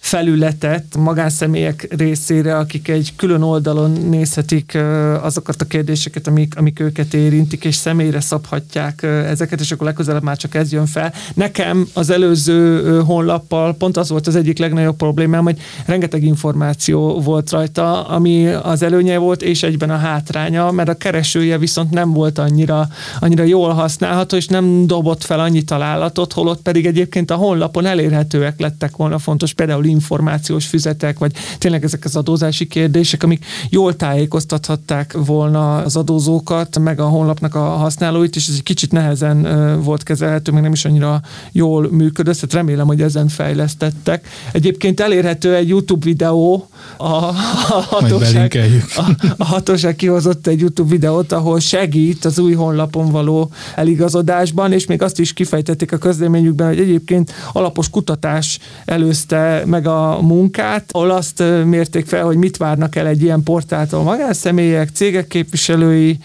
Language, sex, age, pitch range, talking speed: Hungarian, male, 30-49, 155-170 Hz, 150 wpm